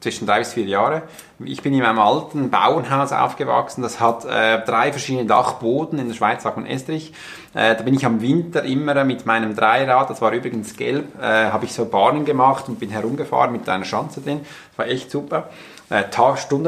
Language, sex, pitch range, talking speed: German, male, 110-140 Hz, 200 wpm